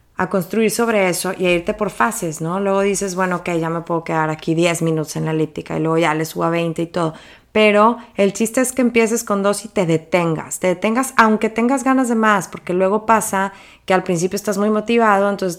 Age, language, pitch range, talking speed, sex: 20-39, English, 180-215 Hz, 235 wpm, female